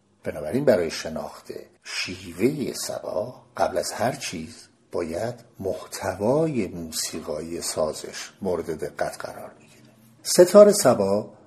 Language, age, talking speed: Persian, 50-69, 100 wpm